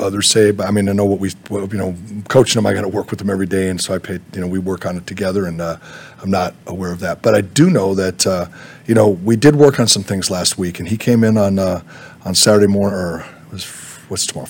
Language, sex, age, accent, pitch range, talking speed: English, male, 40-59, American, 95-115 Hz, 290 wpm